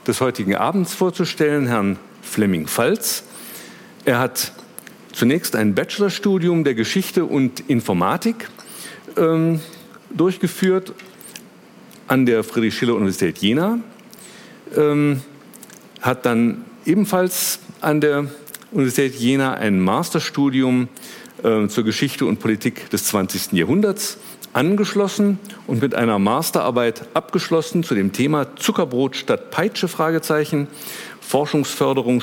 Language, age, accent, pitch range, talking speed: German, 50-69, German, 115-190 Hz, 95 wpm